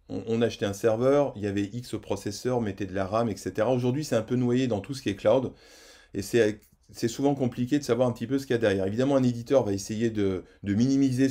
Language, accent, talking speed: French, French, 250 wpm